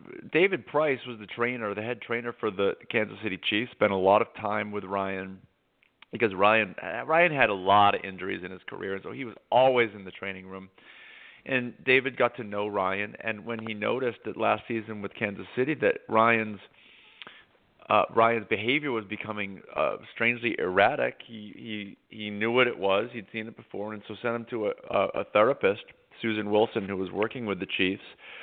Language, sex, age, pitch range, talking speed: English, male, 40-59, 105-125 Hz, 195 wpm